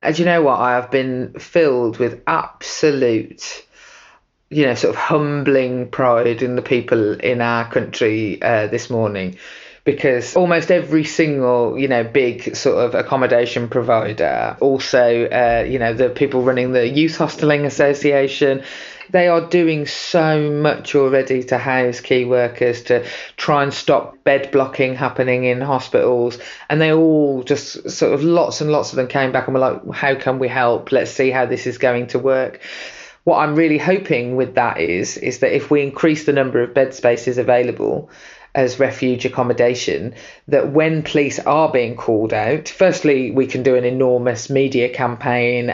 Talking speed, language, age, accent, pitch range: 170 wpm, English, 30-49, British, 125-145 Hz